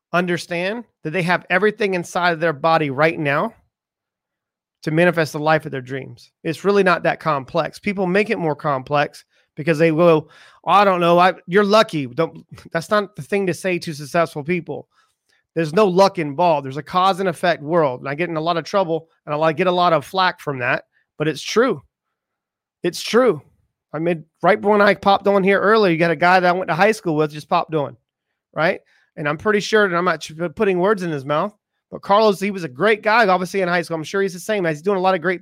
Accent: American